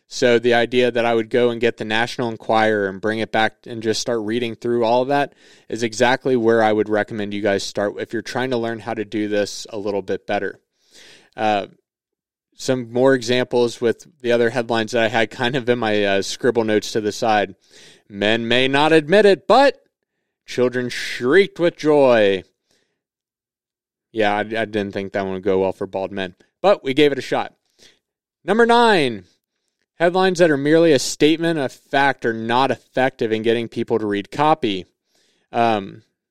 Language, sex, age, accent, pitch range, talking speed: English, male, 20-39, American, 110-130 Hz, 190 wpm